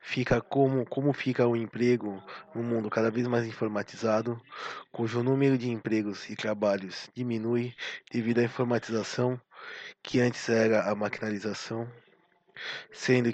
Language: Portuguese